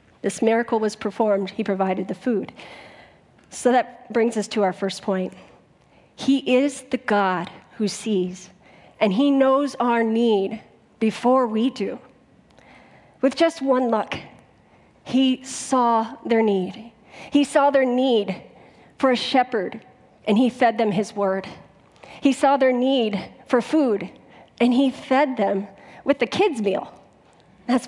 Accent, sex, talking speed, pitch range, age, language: American, female, 140 wpm, 210-260 Hz, 40-59, English